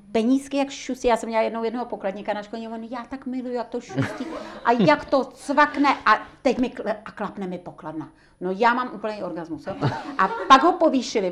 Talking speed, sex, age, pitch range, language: 200 wpm, female, 50-69, 180-235 Hz, Czech